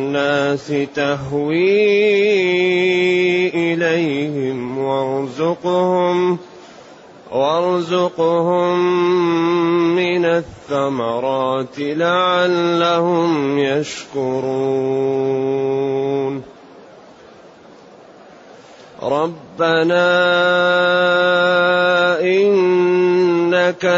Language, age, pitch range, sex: Arabic, 30-49, 145-180 Hz, male